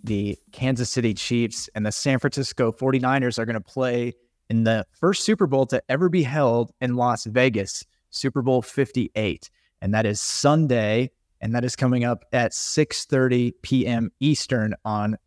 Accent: American